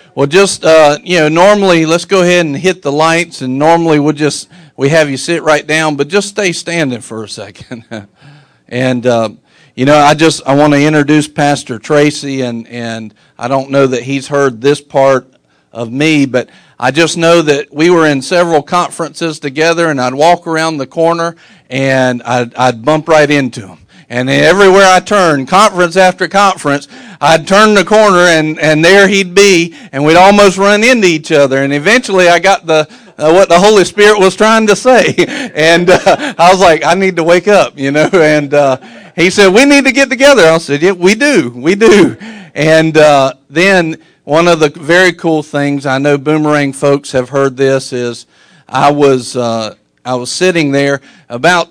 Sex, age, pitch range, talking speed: male, 50-69, 135-175 Hz, 195 wpm